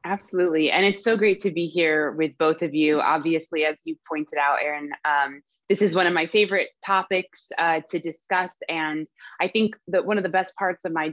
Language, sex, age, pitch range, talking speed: English, female, 20-39, 155-195 Hz, 210 wpm